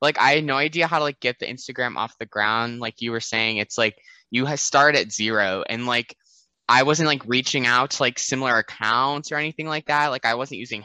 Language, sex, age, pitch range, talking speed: English, male, 10-29, 110-135 Hz, 245 wpm